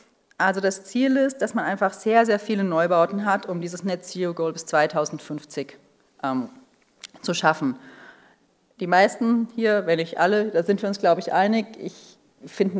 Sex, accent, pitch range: female, German, 170-215 Hz